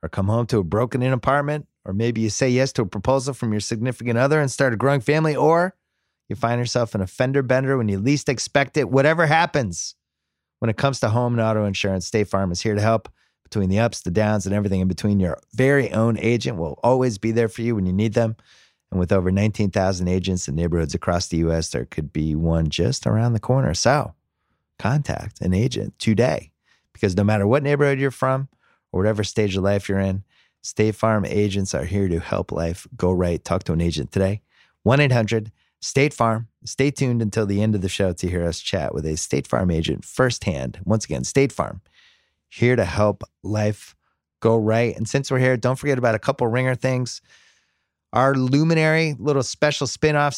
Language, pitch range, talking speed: English, 95-130 Hz, 205 wpm